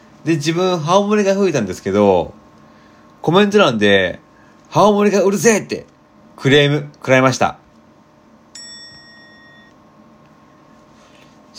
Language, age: Japanese, 40-59